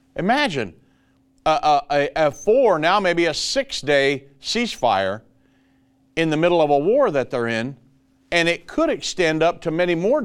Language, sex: English, male